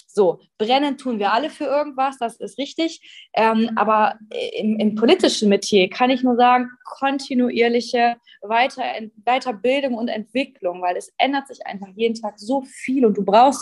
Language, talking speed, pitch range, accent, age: German, 165 wpm, 210-260 Hz, German, 20-39